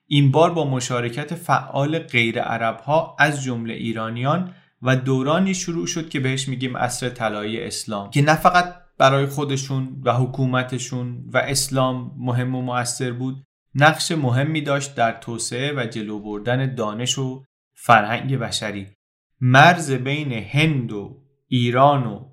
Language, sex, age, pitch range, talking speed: Persian, male, 30-49, 115-140 Hz, 135 wpm